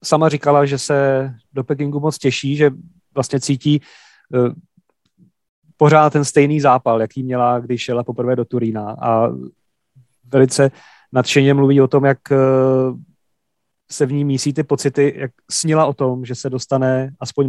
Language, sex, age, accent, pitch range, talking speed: Czech, male, 30-49, native, 125-145 Hz, 150 wpm